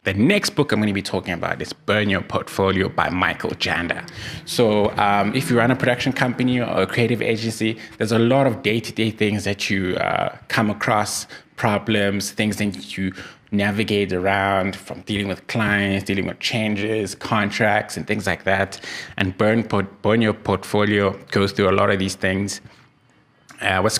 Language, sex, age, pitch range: English, male, 20-39, 95-110 Hz